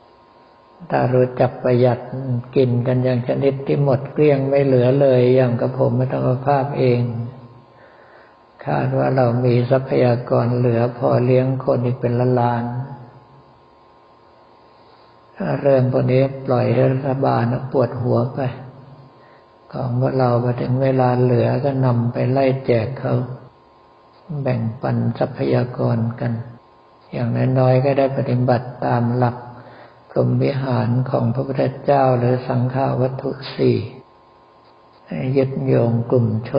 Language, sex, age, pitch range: Thai, male, 60-79, 120-130 Hz